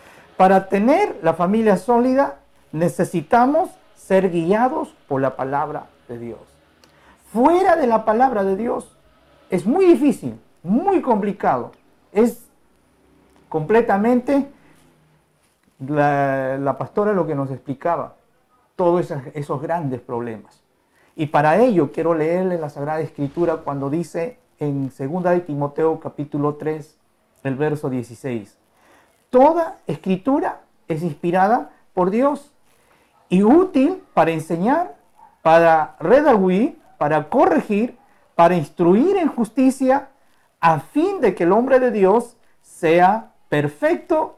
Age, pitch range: 50-69, 155-245 Hz